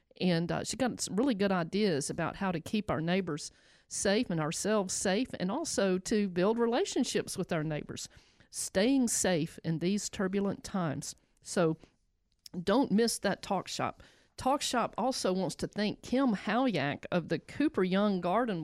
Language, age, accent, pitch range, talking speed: English, 50-69, American, 165-215 Hz, 165 wpm